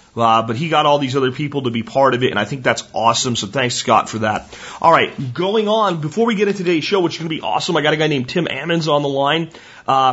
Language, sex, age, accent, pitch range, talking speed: English, male, 30-49, American, 135-180 Hz, 295 wpm